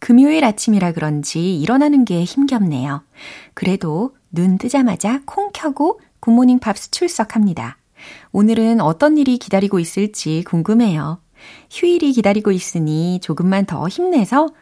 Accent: native